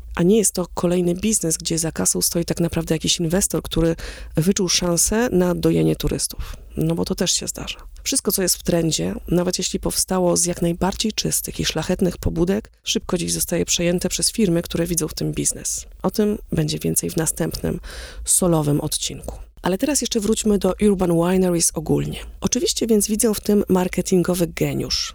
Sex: female